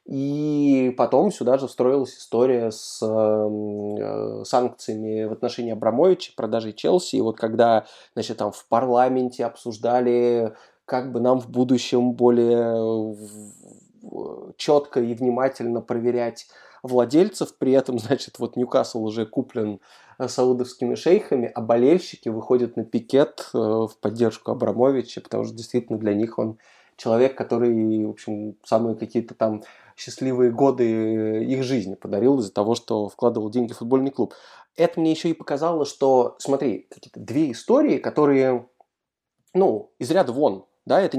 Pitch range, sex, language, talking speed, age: 110-130 Hz, male, Russian, 135 wpm, 20-39